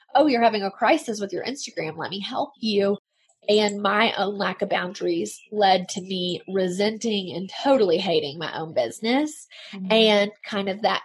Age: 20-39